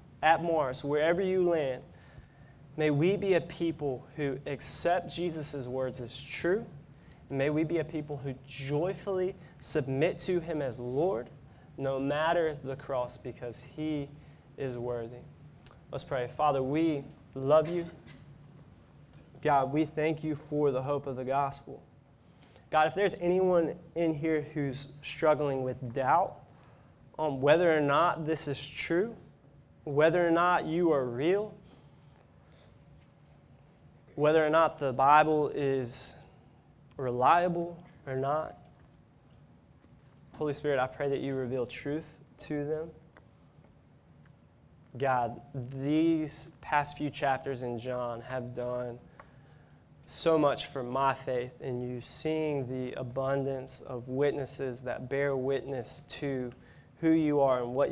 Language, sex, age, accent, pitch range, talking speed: English, male, 20-39, American, 135-155 Hz, 130 wpm